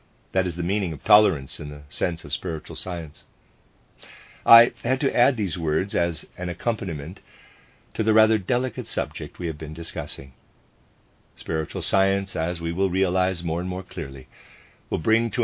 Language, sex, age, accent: English, male, 50-69, American